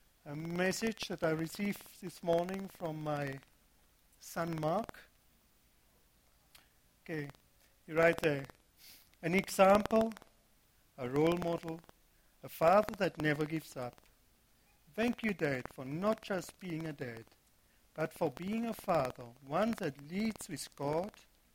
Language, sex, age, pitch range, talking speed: English, male, 50-69, 125-190 Hz, 125 wpm